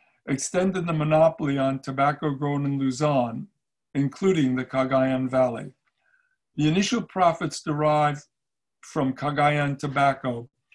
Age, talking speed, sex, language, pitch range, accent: 60-79, 105 wpm, male, English, 130-160 Hz, American